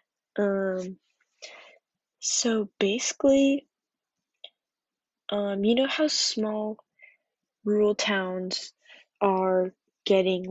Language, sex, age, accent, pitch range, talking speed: English, female, 10-29, American, 185-215 Hz, 70 wpm